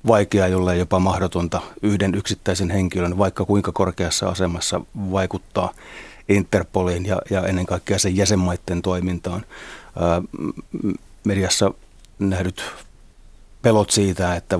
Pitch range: 85-95 Hz